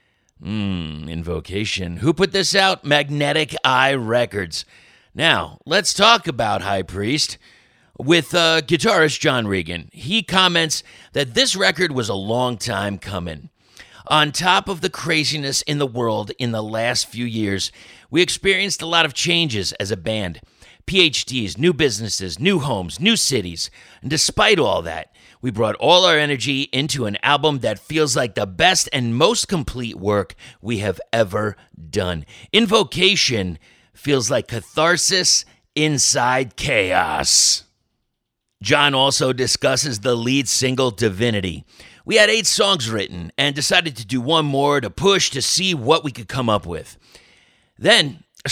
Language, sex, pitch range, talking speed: English, male, 105-160 Hz, 150 wpm